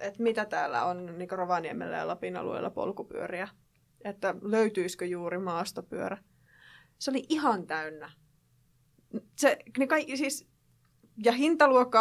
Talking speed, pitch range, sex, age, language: 115 wpm, 180-255 Hz, female, 20-39, Finnish